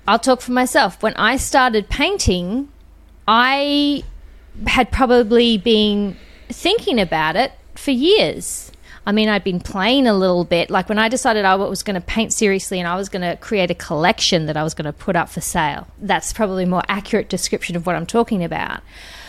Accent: Australian